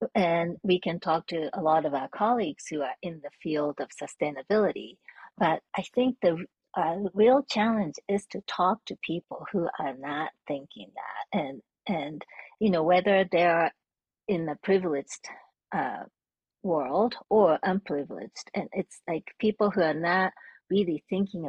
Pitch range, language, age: 155-205 Hz, English, 40-59